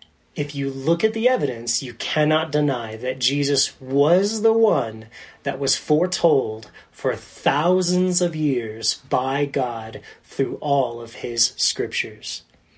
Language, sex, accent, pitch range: English, male, American, 140-210 Hz